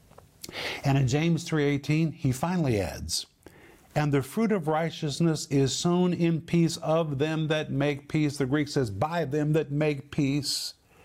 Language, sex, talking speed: English, male, 160 wpm